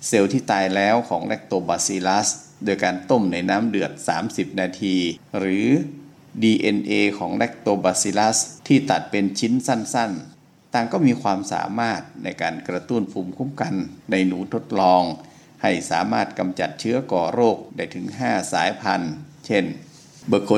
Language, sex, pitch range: Thai, male, 95-130 Hz